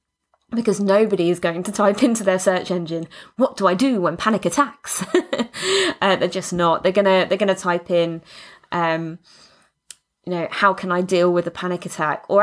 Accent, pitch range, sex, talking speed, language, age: British, 175-215 Hz, female, 195 wpm, English, 20-39